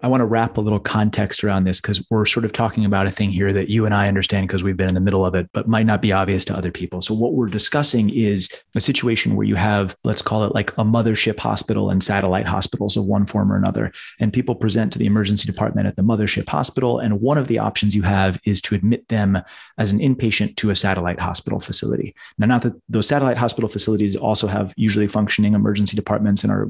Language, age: English, 30-49